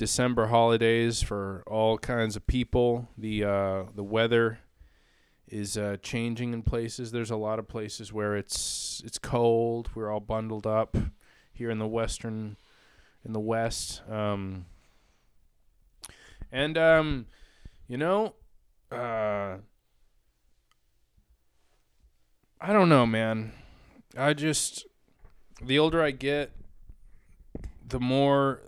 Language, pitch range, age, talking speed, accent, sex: English, 100-125 Hz, 20-39, 115 wpm, American, male